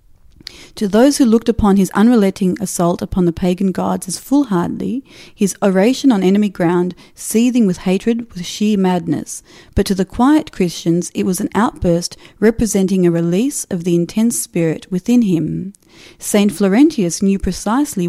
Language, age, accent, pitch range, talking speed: English, 40-59, Australian, 180-215 Hz, 155 wpm